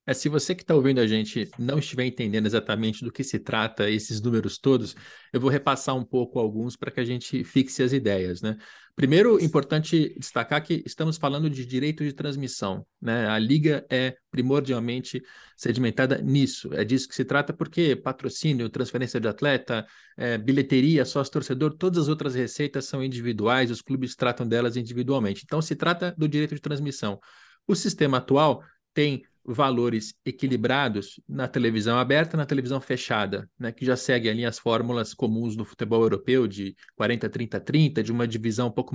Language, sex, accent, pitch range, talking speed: Portuguese, male, Brazilian, 115-140 Hz, 170 wpm